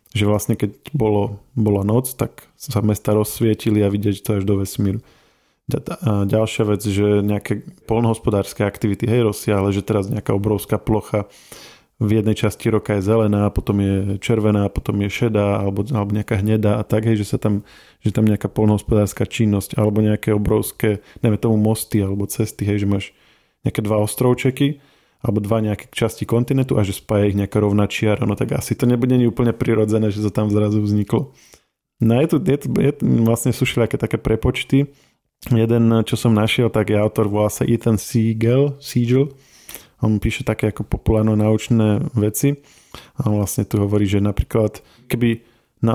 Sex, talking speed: male, 170 wpm